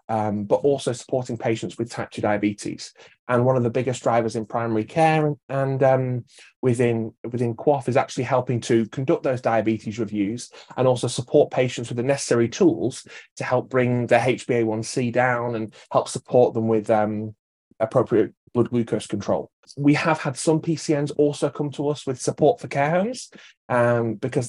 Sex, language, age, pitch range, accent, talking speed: male, English, 20-39, 120-145 Hz, British, 175 wpm